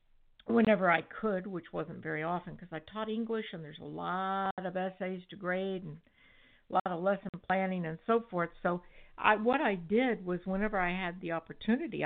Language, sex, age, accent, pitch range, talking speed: English, female, 60-79, American, 170-205 Hz, 190 wpm